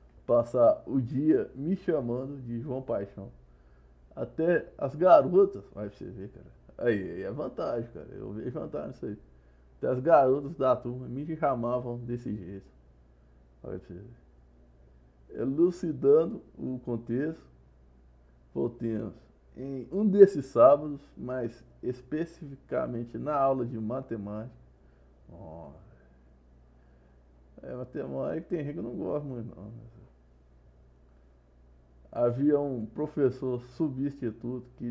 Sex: male